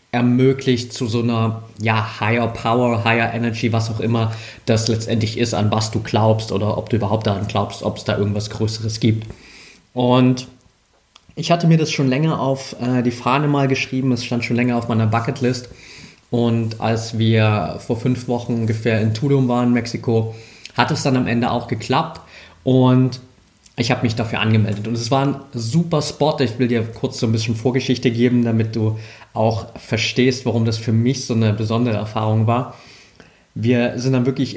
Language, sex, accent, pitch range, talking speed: German, male, German, 110-130 Hz, 185 wpm